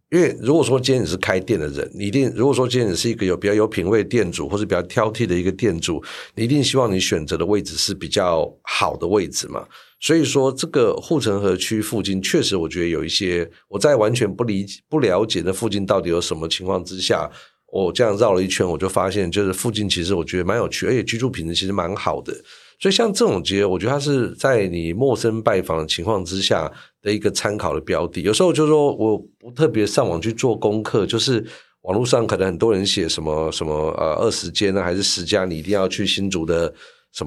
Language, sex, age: Chinese, male, 50-69